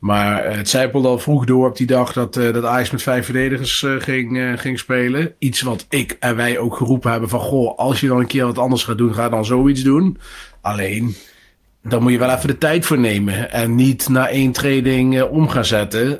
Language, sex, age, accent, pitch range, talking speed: Dutch, male, 30-49, Dutch, 115-130 Hz, 220 wpm